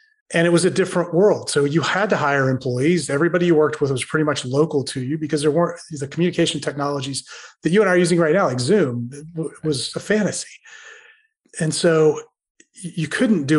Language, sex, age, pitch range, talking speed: English, male, 30-49, 145-175 Hz, 205 wpm